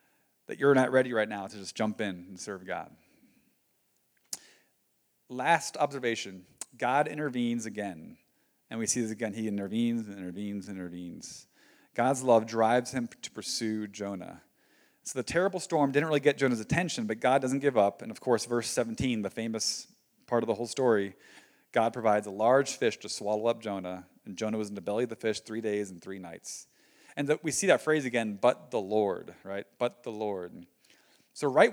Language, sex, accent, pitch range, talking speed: English, male, American, 105-140 Hz, 190 wpm